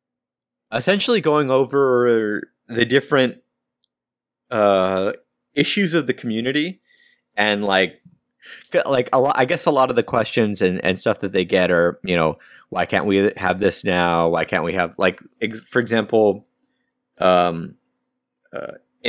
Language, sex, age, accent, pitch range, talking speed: English, male, 30-49, American, 95-130 Hz, 145 wpm